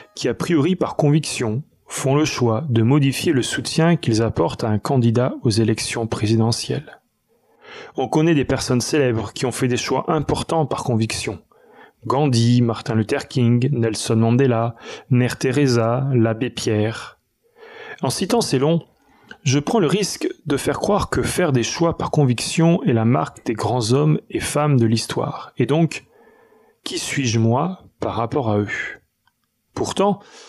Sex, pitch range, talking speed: male, 115-160 Hz, 155 wpm